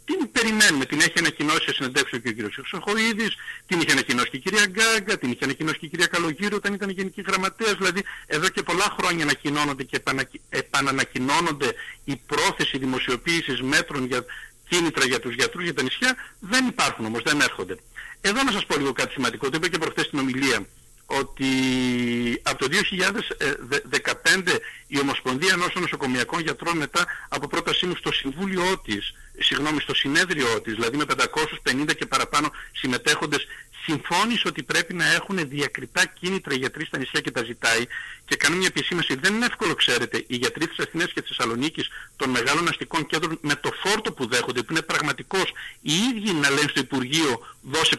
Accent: native